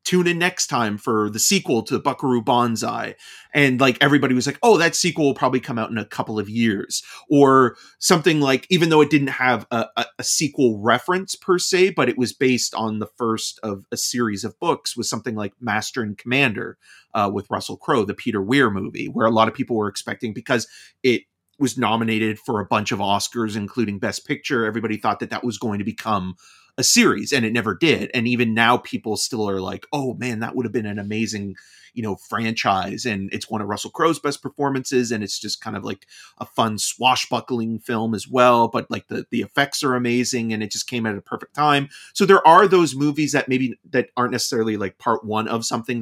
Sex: male